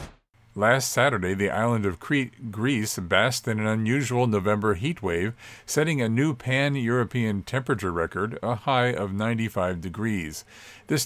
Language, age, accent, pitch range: English, 50-69, American, 105-130 Hz